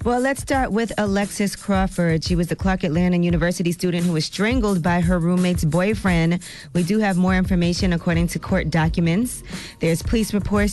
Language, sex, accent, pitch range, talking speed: English, female, American, 160-185 Hz, 180 wpm